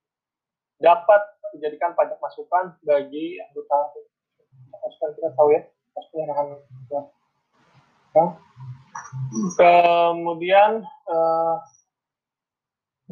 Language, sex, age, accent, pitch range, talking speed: Indonesian, male, 20-39, native, 145-190 Hz, 80 wpm